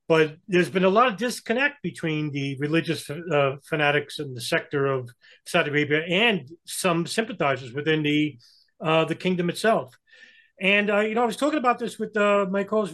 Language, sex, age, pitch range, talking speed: English, male, 40-59, 140-165 Hz, 185 wpm